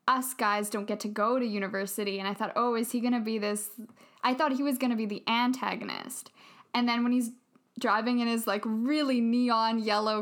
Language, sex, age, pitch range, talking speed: English, female, 10-29, 220-255 Hz, 225 wpm